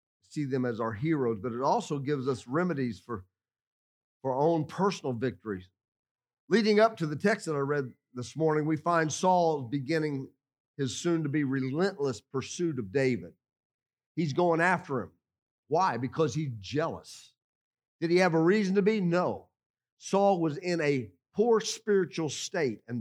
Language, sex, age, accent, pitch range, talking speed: English, male, 50-69, American, 140-200 Hz, 160 wpm